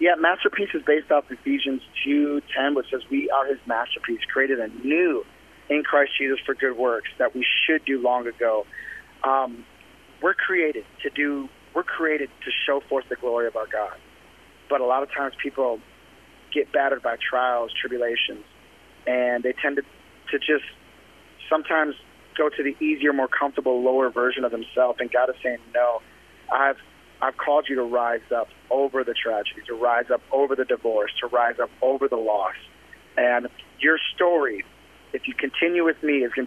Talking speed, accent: 180 wpm, American